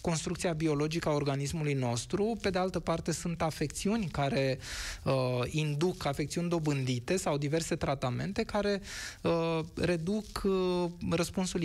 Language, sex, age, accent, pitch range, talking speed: Romanian, male, 20-39, native, 145-180 Hz, 125 wpm